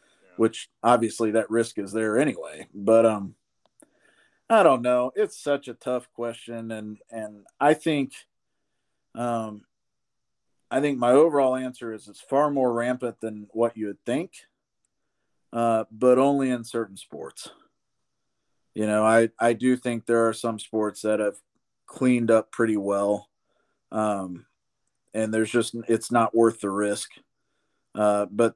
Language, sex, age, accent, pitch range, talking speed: English, male, 40-59, American, 110-125 Hz, 145 wpm